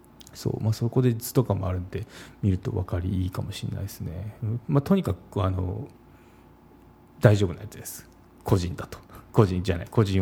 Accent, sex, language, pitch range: native, male, Japanese, 95-120 Hz